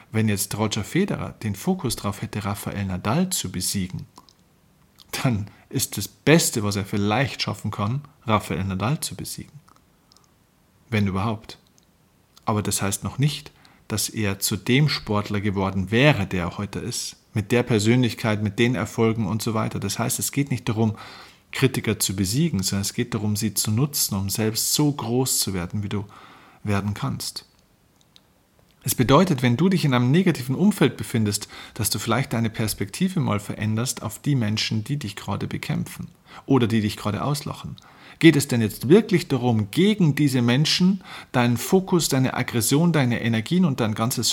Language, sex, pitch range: German, male, 105-140 Hz